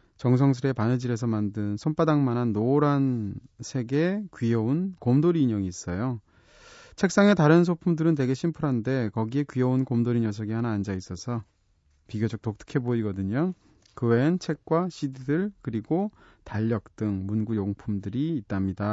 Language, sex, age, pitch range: Korean, male, 30-49, 105-150 Hz